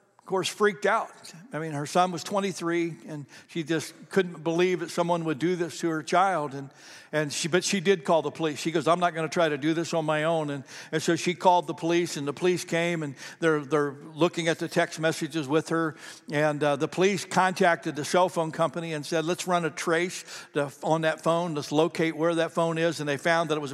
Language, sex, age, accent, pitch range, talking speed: English, male, 60-79, American, 150-175 Hz, 245 wpm